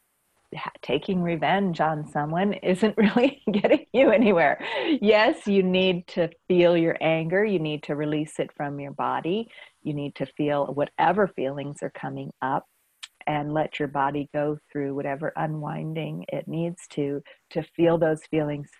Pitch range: 150-205 Hz